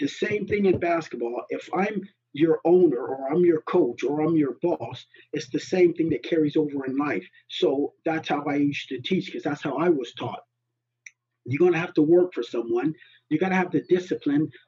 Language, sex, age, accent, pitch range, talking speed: English, male, 40-59, American, 145-185 Hz, 215 wpm